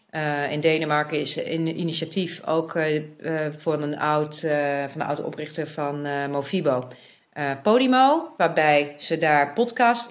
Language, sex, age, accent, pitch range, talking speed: Dutch, female, 30-49, Dutch, 155-205 Hz, 155 wpm